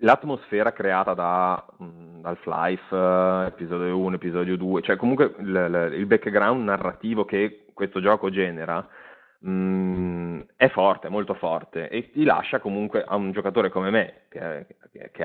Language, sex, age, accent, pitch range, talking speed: Italian, male, 30-49, native, 90-110 Hz, 140 wpm